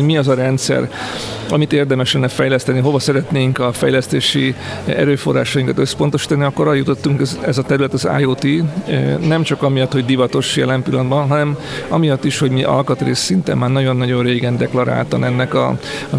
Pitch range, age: 130-145 Hz, 40-59